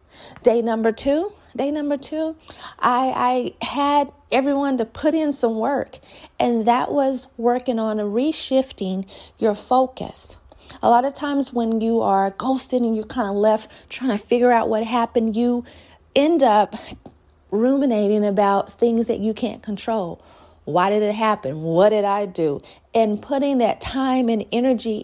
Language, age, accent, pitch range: English, 40-59, American, 215-255 Hz